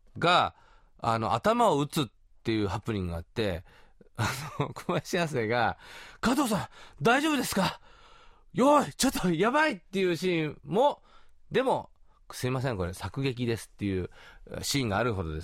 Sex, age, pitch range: male, 40-59, 110-155 Hz